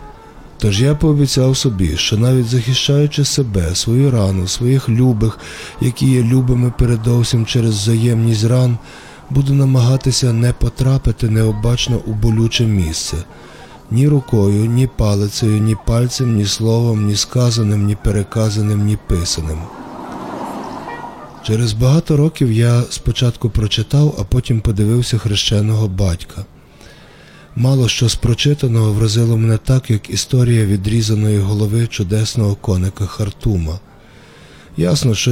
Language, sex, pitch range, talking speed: Ukrainian, male, 105-125 Hz, 115 wpm